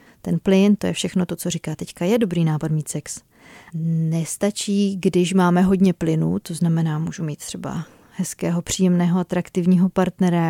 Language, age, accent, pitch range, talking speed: Czech, 30-49, native, 175-195 Hz, 160 wpm